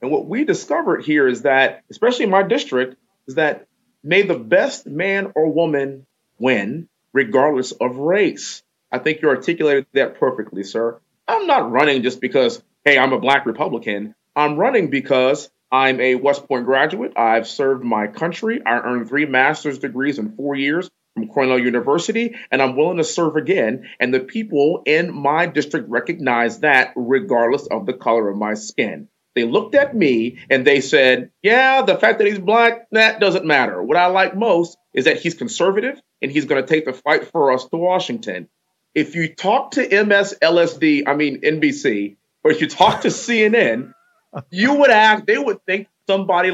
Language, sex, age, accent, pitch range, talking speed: English, male, 30-49, American, 135-200 Hz, 180 wpm